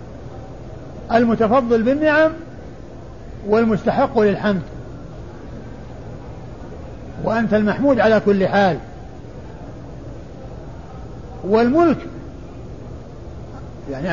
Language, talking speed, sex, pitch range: Arabic, 45 wpm, male, 205-260 Hz